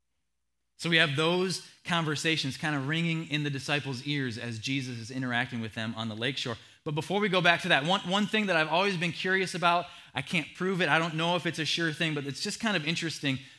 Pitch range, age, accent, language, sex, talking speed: 125-165 Hz, 20-39, American, English, male, 245 wpm